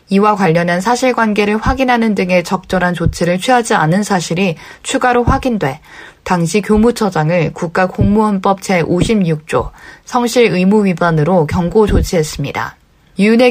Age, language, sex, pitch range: 20-39, Korean, female, 170-220 Hz